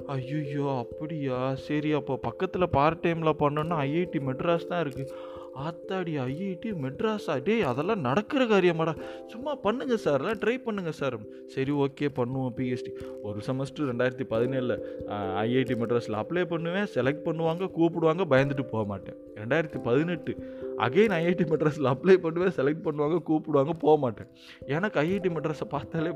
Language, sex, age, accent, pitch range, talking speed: Tamil, male, 20-39, native, 130-175 Hz, 130 wpm